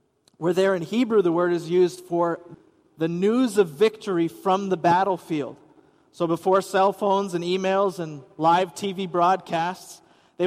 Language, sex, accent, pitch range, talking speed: English, male, American, 175-215 Hz, 155 wpm